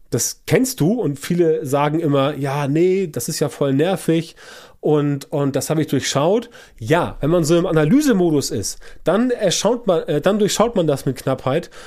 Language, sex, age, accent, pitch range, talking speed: German, male, 30-49, German, 140-170 Hz, 175 wpm